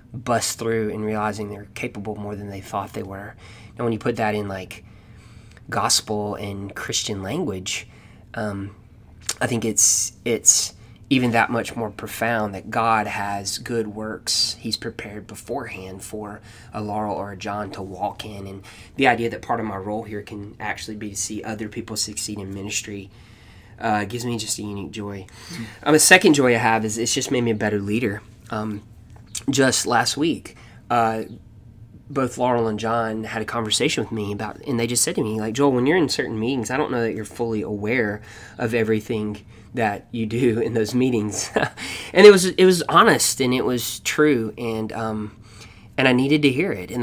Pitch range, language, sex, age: 105-115 Hz, English, male, 20-39